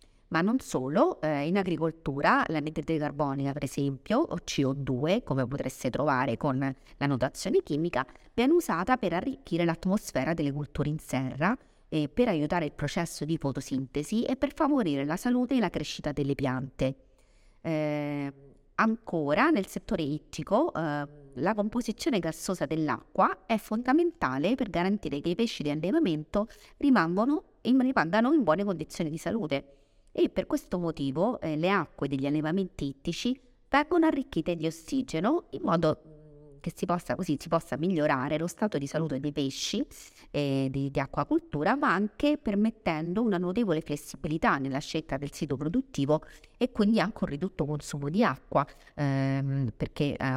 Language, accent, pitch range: Italian, native, 145-205 Hz